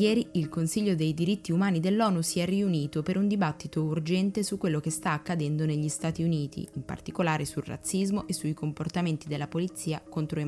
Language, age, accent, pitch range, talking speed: Italian, 20-39, native, 150-175 Hz, 190 wpm